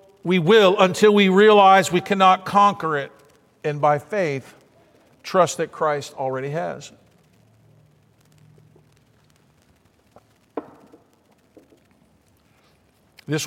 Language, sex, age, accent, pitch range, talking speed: English, male, 50-69, American, 145-205 Hz, 80 wpm